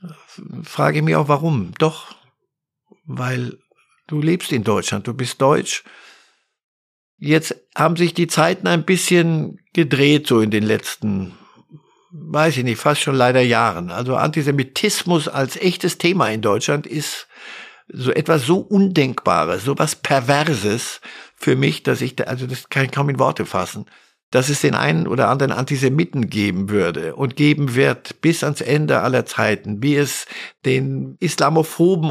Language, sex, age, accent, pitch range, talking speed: German, male, 60-79, German, 125-165 Hz, 155 wpm